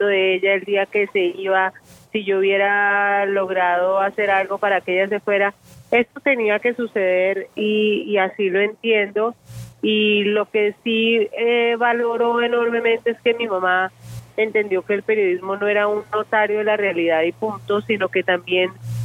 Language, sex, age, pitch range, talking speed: Spanish, female, 30-49, 185-210 Hz, 170 wpm